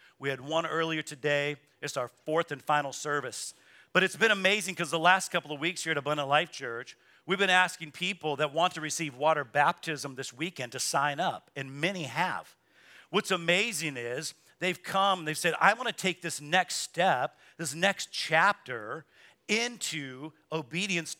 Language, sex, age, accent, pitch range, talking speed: English, male, 50-69, American, 165-220 Hz, 180 wpm